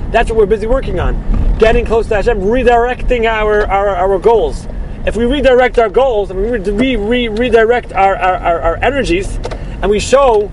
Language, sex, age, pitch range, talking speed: English, male, 30-49, 205-265 Hz, 180 wpm